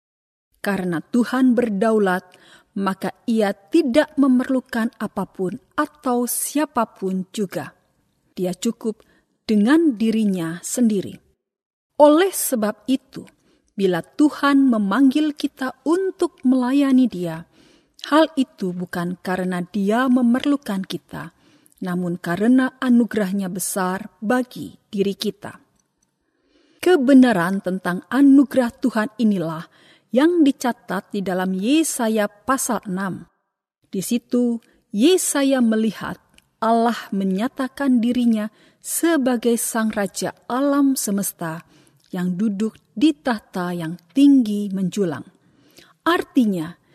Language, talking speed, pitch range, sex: Indonesian, 90 wpm, 190-260 Hz, female